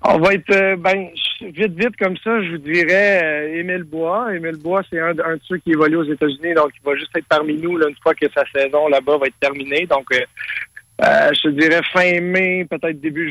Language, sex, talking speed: French, male, 225 wpm